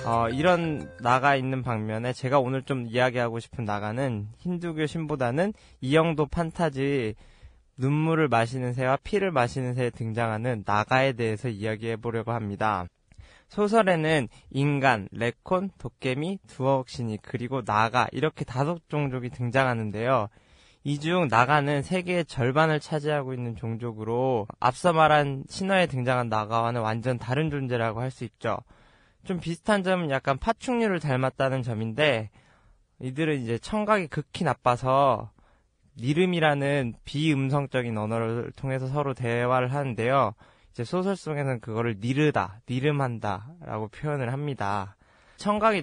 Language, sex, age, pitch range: Korean, male, 20-39, 115-150 Hz